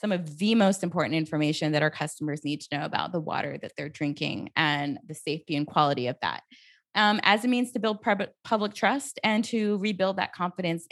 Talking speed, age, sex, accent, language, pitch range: 210 wpm, 20-39, female, American, English, 170-210 Hz